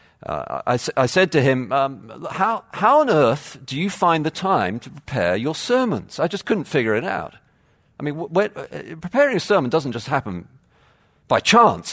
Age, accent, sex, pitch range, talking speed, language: 50-69, British, male, 100-160 Hz, 190 wpm, English